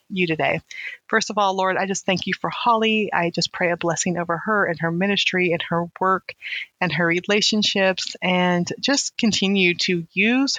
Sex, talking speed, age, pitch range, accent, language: female, 185 wpm, 30-49, 175-200 Hz, American, English